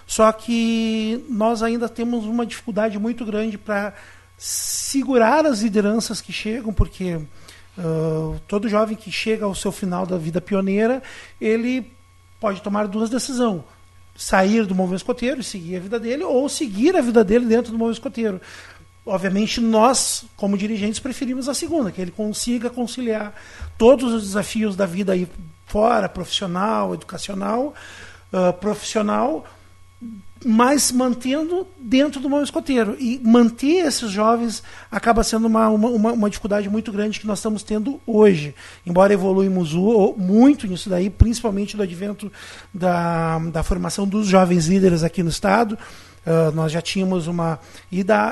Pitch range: 180-230 Hz